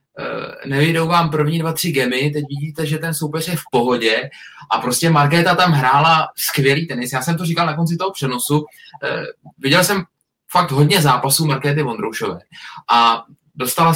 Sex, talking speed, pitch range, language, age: male, 165 wpm, 140-165 Hz, Czech, 20-39